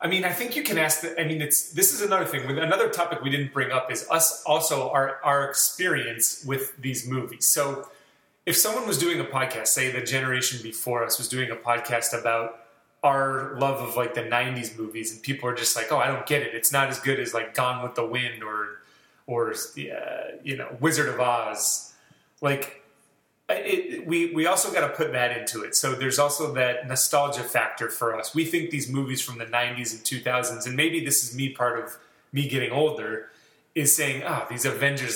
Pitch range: 120-150 Hz